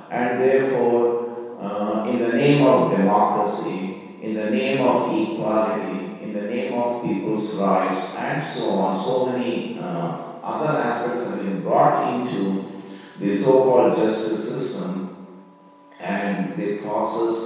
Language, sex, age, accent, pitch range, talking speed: English, male, 50-69, Indian, 100-120 Hz, 130 wpm